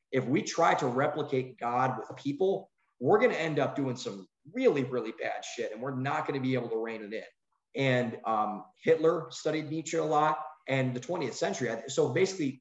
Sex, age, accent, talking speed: male, 30-49, American, 205 wpm